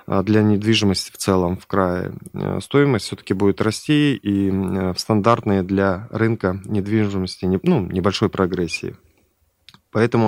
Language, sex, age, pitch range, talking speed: Russian, male, 20-39, 95-110 Hz, 115 wpm